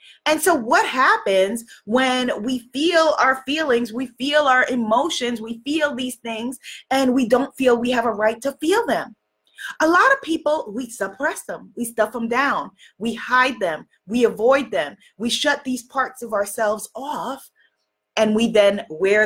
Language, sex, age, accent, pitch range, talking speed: English, female, 20-39, American, 205-295 Hz, 175 wpm